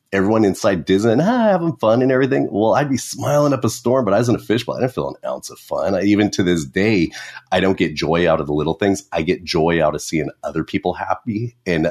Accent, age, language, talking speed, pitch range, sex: American, 30-49, English, 260 wpm, 80-105 Hz, male